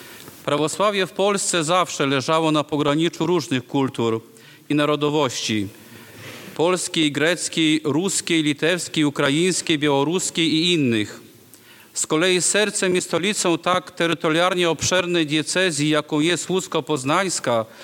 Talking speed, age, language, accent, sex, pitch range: 105 wpm, 40-59, Polish, native, male, 145-175 Hz